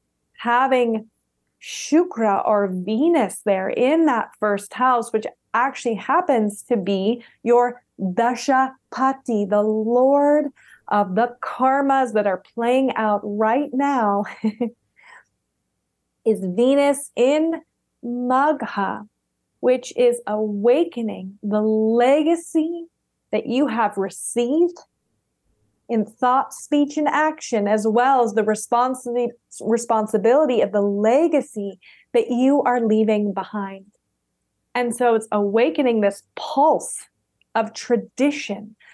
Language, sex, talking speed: English, female, 105 wpm